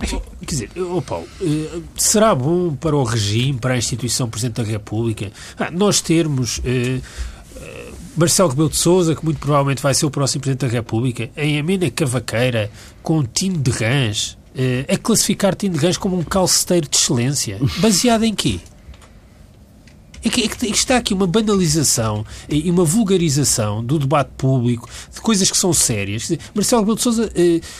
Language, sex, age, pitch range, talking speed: Portuguese, male, 40-59, 130-195 Hz, 175 wpm